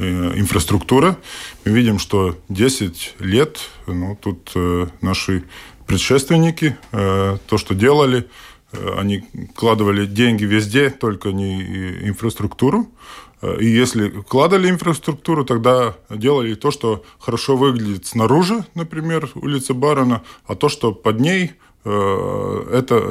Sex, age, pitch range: male, 20-39, 95-120 Hz